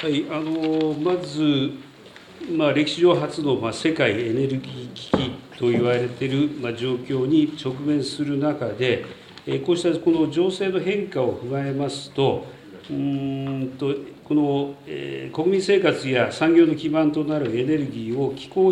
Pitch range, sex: 135-180 Hz, male